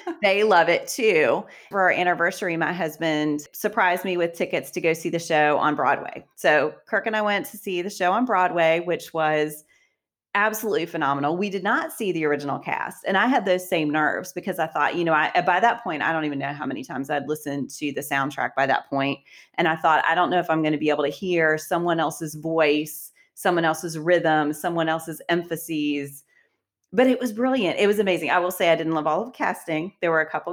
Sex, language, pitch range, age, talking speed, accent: female, English, 155-180 Hz, 30-49, 225 wpm, American